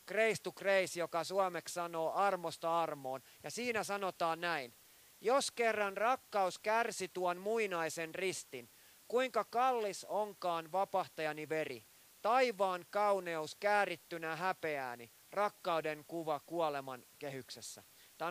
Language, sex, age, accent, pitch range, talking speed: Finnish, male, 30-49, native, 160-200 Hz, 100 wpm